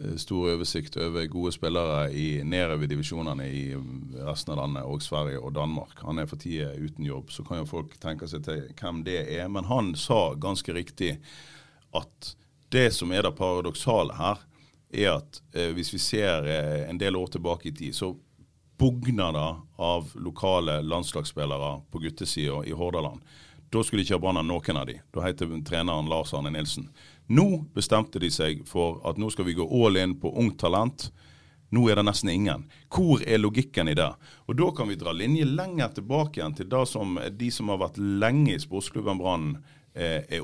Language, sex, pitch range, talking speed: English, male, 85-125 Hz, 185 wpm